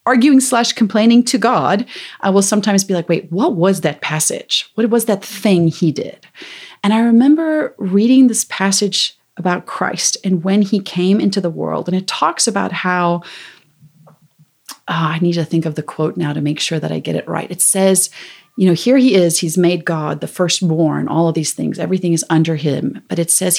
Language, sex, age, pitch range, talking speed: English, female, 30-49, 165-230 Hz, 205 wpm